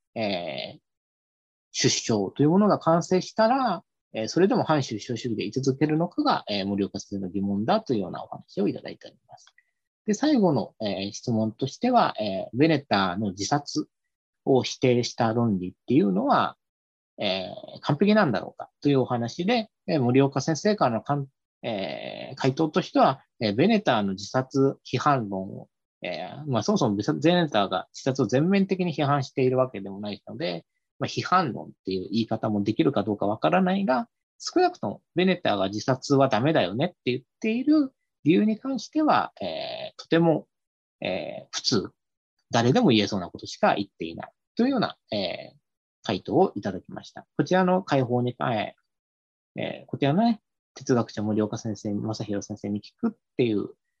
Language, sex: English, male